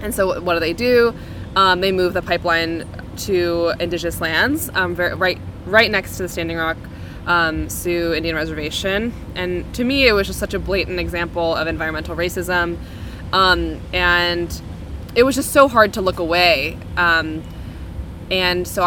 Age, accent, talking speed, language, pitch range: 20-39, American, 170 wpm, English, 165-195 Hz